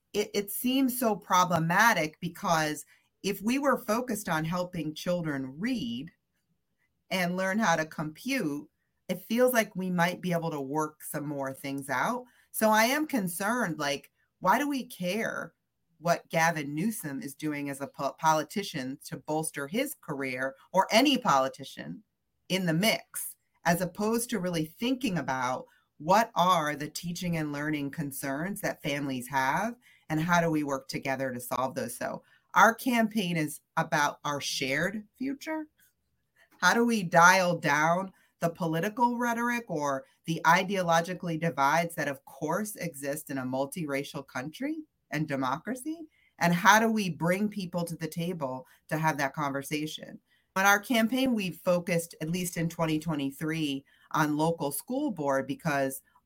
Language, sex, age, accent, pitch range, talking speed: English, female, 40-59, American, 150-210 Hz, 150 wpm